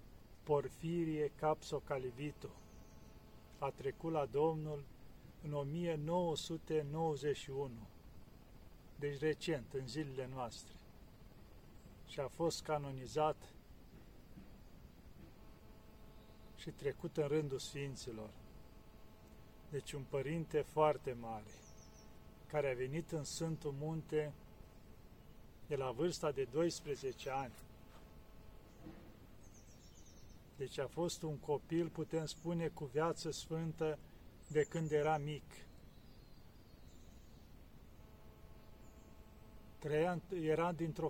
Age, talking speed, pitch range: 40-59, 85 wpm, 140-160 Hz